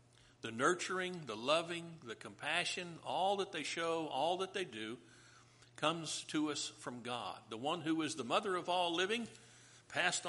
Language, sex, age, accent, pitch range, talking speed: English, male, 60-79, American, 120-170 Hz, 170 wpm